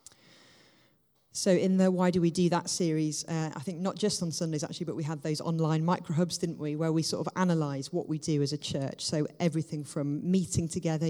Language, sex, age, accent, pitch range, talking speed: English, female, 30-49, British, 145-165 Hz, 225 wpm